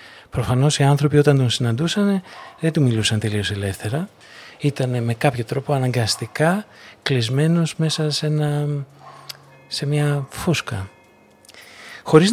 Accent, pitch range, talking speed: native, 120-160 Hz, 115 wpm